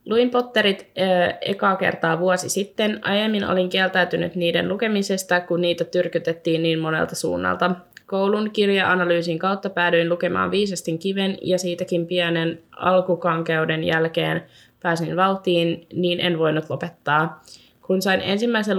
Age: 20-39